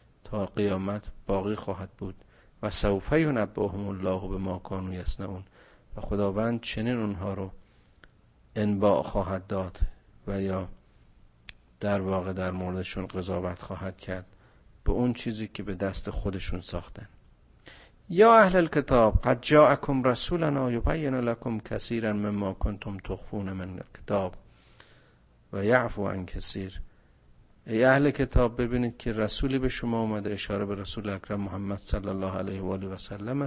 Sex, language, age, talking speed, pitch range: male, Persian, 50-69, 135 wpm, 95-125 Hz